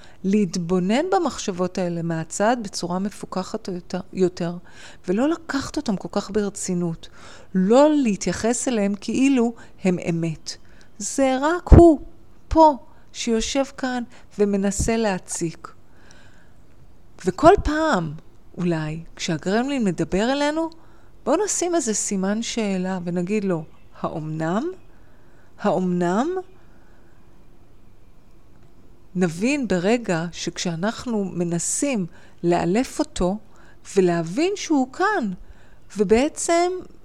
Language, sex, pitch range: Hebrew, female, 180-260 Hz